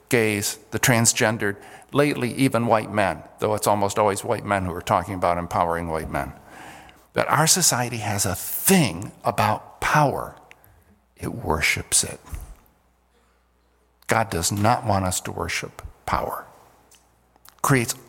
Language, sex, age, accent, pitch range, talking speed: English, male, 50-69, American, 90-125 Hz, 135 wpm